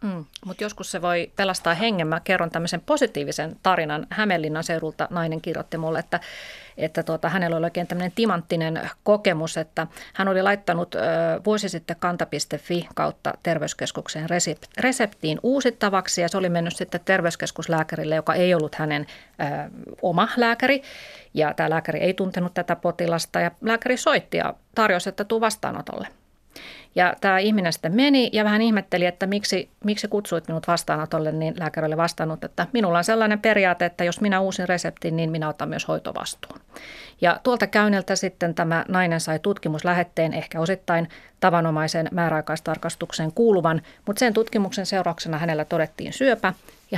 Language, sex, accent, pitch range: Finnish, female, native, 160-195 Hz